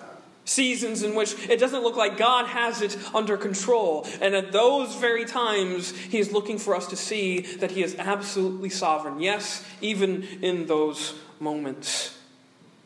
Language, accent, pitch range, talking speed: English, American, 180-210 Hz, 160 wpm